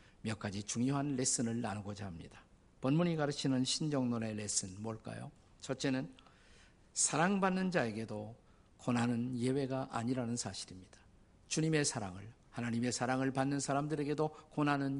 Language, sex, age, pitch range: Korean, male, 50-69, 105-145 Hz